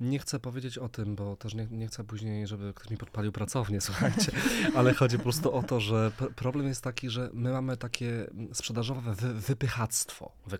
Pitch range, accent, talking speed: 105-130 Hz, native, 205 wpm